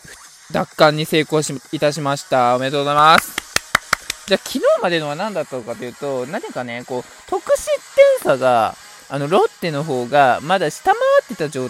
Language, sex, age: Japanese, male, 20-39